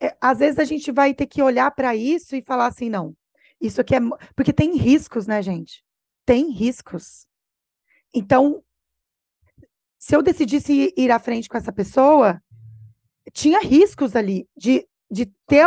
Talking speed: 155 wpm